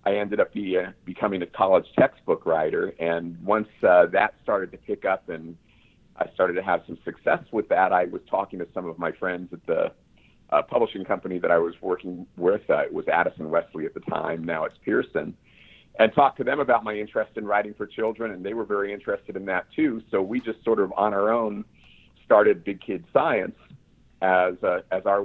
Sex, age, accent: male, 50-69, American